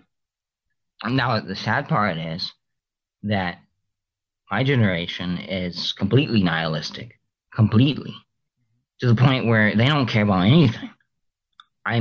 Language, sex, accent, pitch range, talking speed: English, male, American, 100-130 Hz, 110 wpm